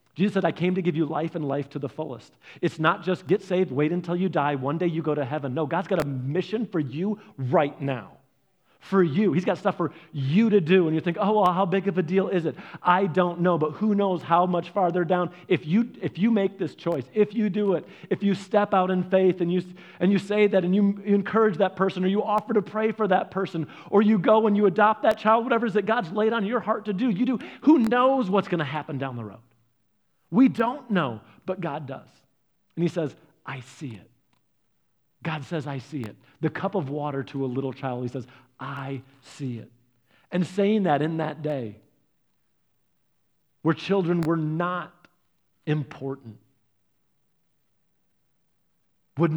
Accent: American